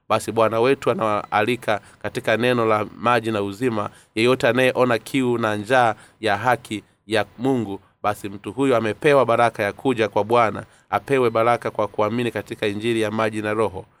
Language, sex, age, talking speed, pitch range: Swahili, male, 30-49, 165 wpm, 105-125 Hz